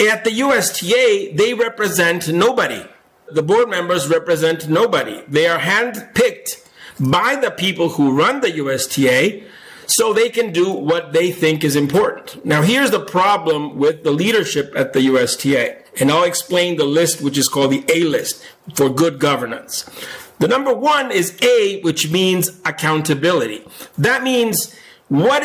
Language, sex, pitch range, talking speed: English, male, 160-230 Hz, 150 wpm